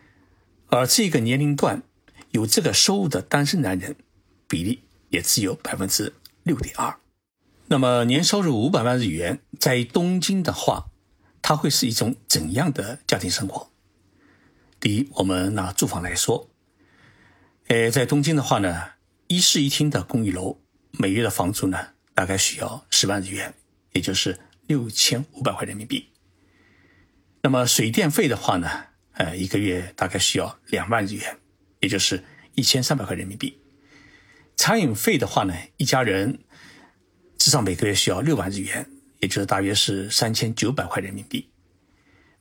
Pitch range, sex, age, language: 95-140 Hz, male, 60-79, Chinese